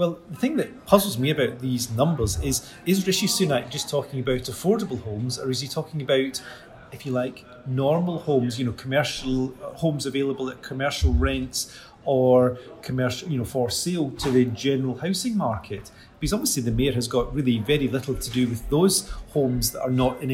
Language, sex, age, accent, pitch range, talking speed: English, male, 30-49, British, 120-140 Hz, 190 wpm